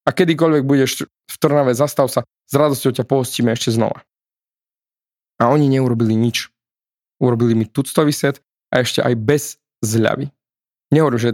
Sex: male